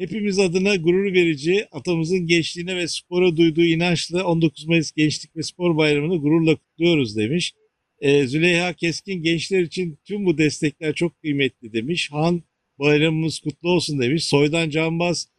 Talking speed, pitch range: 140 wpm, 145-175 Hz